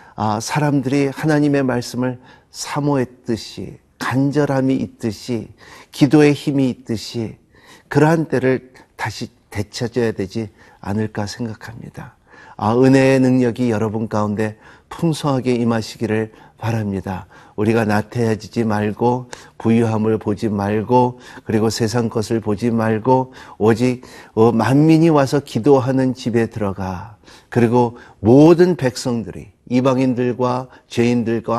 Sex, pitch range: male, 110-130 Hz